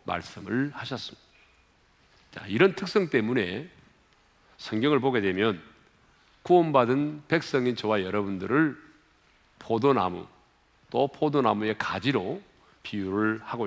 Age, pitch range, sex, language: 40-59, 100-160 Hz, male, Korean